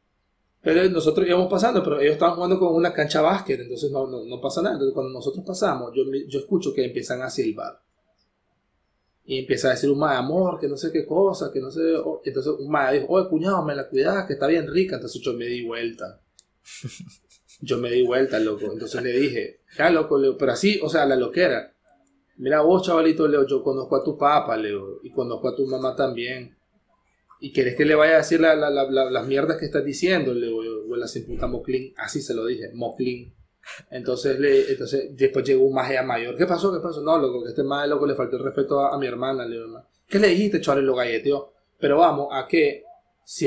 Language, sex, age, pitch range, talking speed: Spanish, male, 30-49, 130-190 Hz, 220 wpm